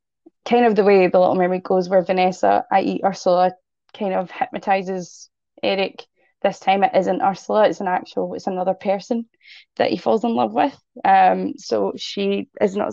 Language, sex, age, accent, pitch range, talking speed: English, female, 20-39, British, 185-225 Hz, 175 wpm